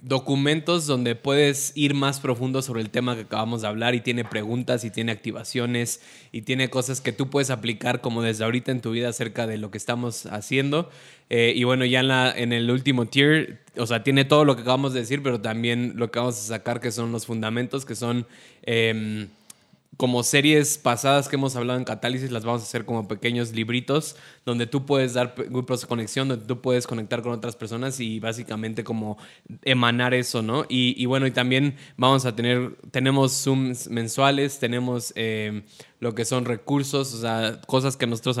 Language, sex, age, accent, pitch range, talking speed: Spanish, male, 20-39, Mexican, 120-135 Hz, 200 wpm